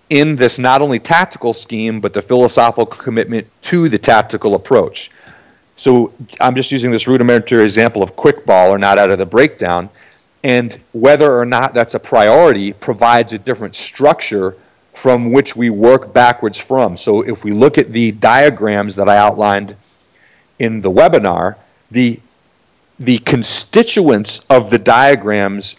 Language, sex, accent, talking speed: English, male, American, 155 wpm